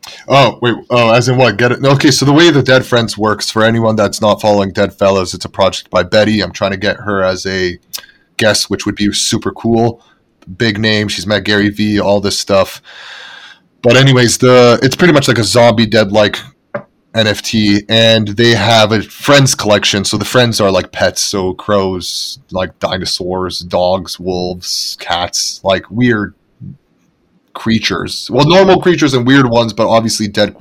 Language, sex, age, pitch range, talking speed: English, male, 30-49, 100-120 Hz, 180 wpm